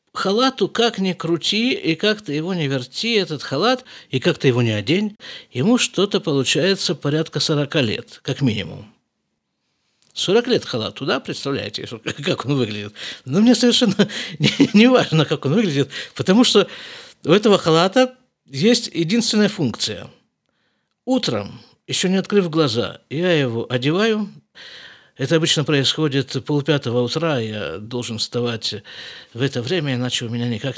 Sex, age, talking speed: male, 50-69, 140 wpm